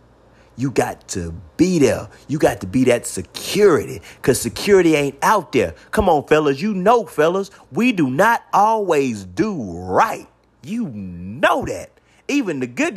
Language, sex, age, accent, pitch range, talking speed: English, male, 30-49, American, 110-175 Hz, 155 wpm